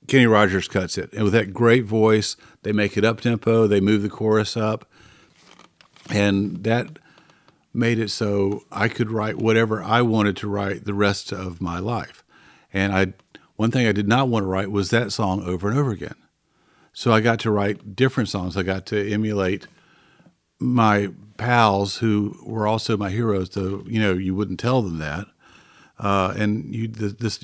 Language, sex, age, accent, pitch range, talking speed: English, male, 50-69, American, 100-125 Hz, 185 wpm